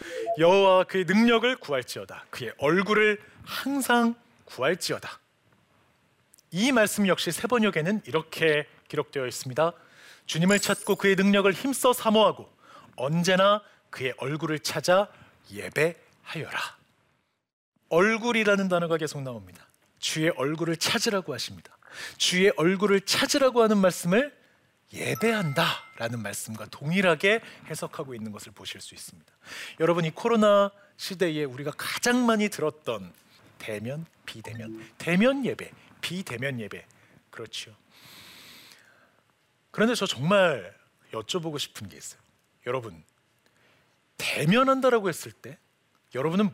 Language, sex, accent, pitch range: Korean, male, native, 155-215 Hz